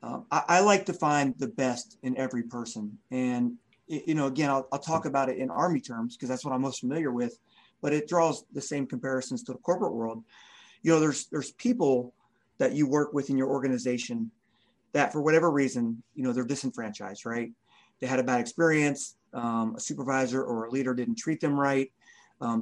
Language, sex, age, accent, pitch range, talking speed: English, male, 30-49, American, 125-150 Hz, 205 wpm